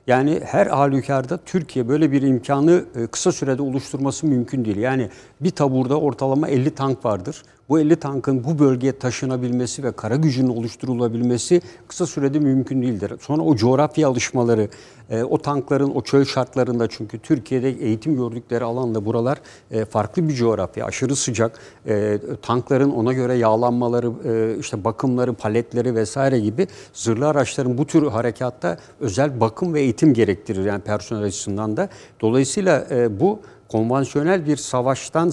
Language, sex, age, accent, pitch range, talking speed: Turkish, male, 60-79, native, 115-145 Hz, 140 wpm